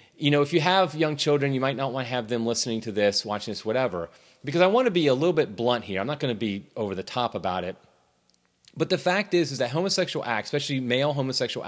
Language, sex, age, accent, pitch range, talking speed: English, male, 30-49, American, 110-145 Hz, 260 wpm